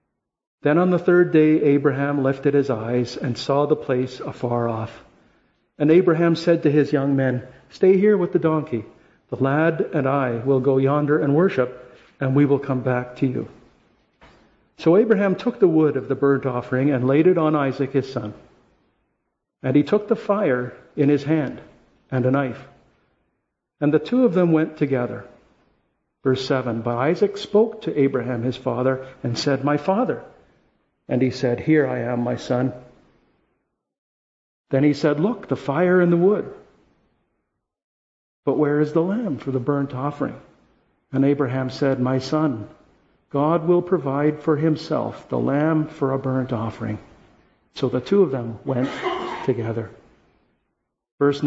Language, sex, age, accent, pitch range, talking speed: English, male, 50-69, American, 130-160 Hz, 165 wpm